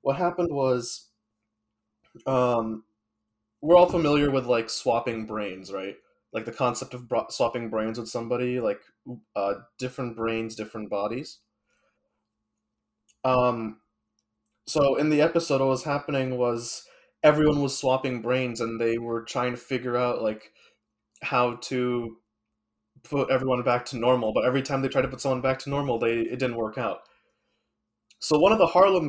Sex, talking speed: male, 155 wpm